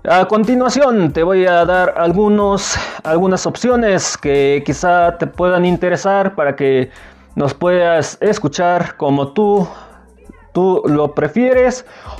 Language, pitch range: Spanish, 155-220 Hz